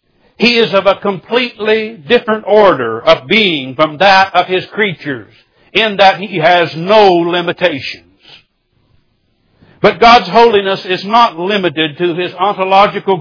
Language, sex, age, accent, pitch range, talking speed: English, male, 60-79, American, 145-195 Hz, 130 wpm